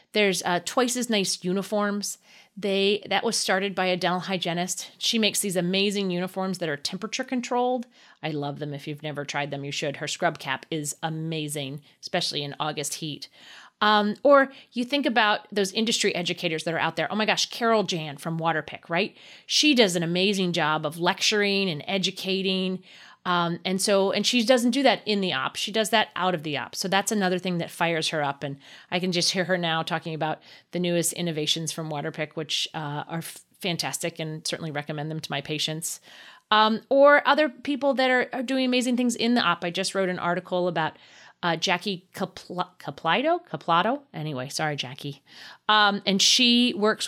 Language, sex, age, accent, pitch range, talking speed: English, female, 30-49, American, 160-210 Hz, 195 wpm